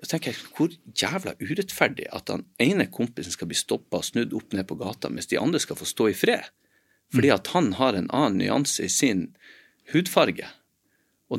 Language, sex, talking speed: English, male, 195 wpm